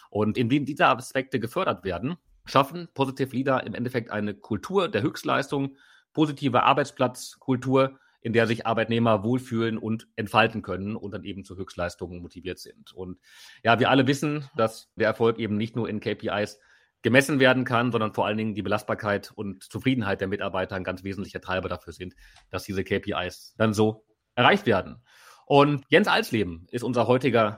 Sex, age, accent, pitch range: male, 30-49, German, 110-130 Hz